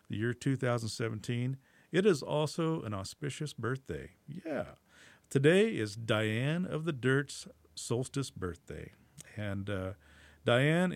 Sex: male